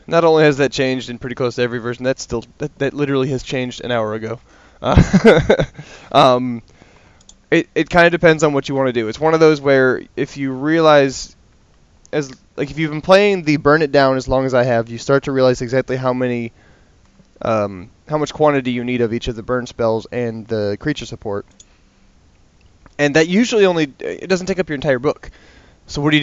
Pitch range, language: 115-145 Hz, English